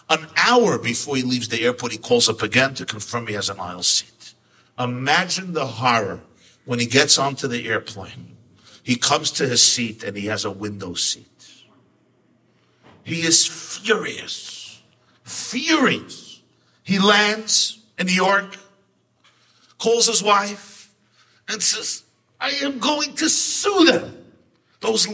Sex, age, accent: male, 50-69, American